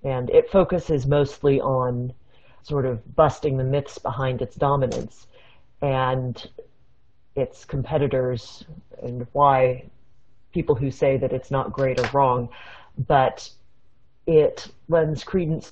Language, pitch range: English, 130-155 Hz